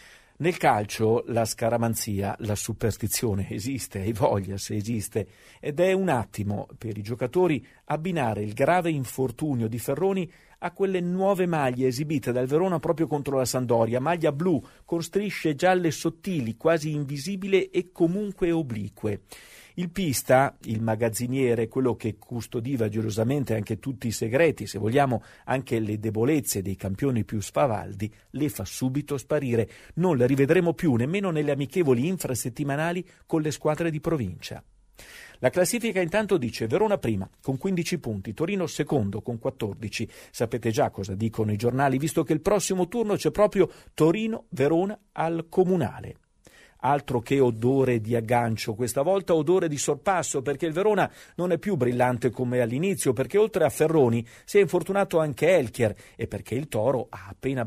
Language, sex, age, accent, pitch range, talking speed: Italian, male, 50-69, native, 115-165 Hz, 155 wpm